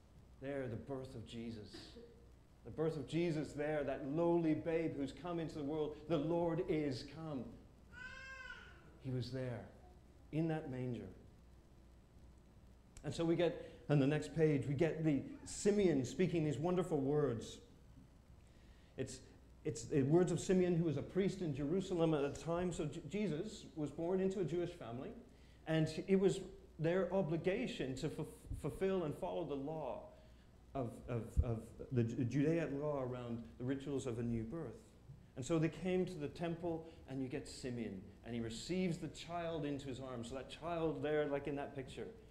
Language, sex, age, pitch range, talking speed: English, male, 40-59, 120-165 Hz, 165 wpm